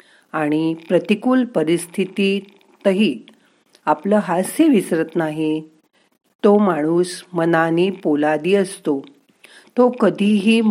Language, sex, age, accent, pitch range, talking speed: Marathi, female, 50-69, native, 150-210 Hz, 80 wpm